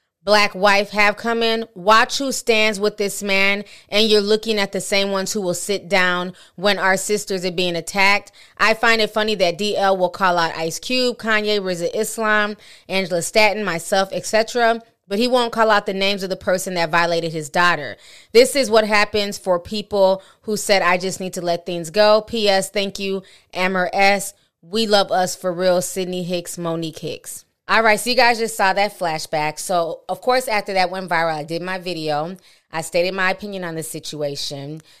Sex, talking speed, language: female, 200 wpm, English